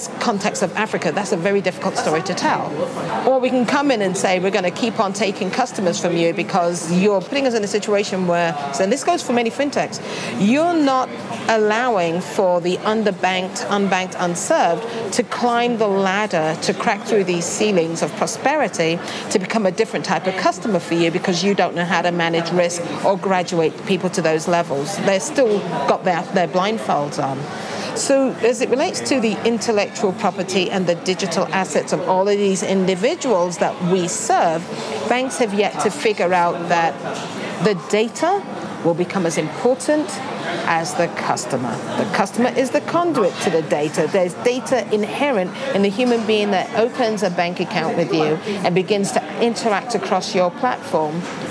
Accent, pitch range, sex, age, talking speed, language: British, 180-235 Hz, female, 40-59, 180 wpm, English